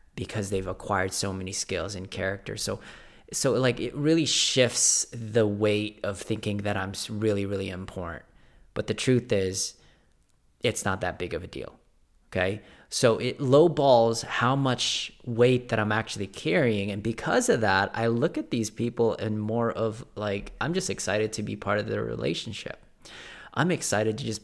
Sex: male